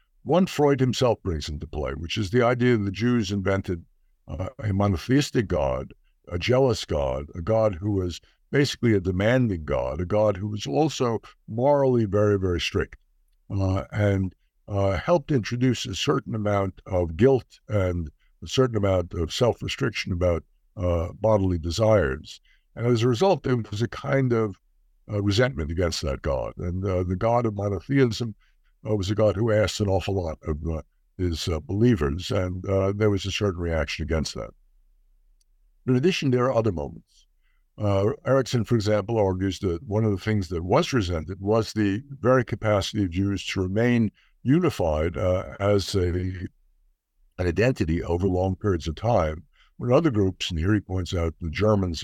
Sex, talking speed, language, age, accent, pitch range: male, 170 wpm, English, 60-79, American, 90-110 Hz